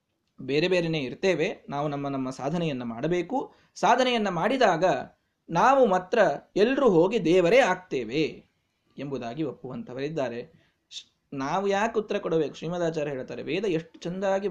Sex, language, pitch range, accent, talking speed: male, Kannada, 155-235 Hz, native, 110 wpm